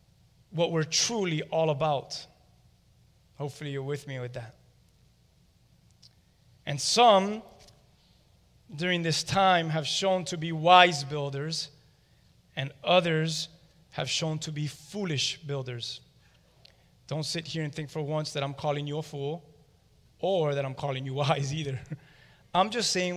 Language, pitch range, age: English, 140-160 Hz, 30-49